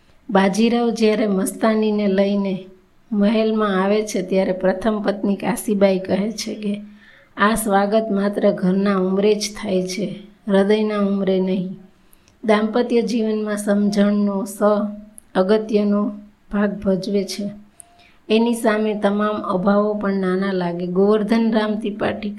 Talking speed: 100 wpm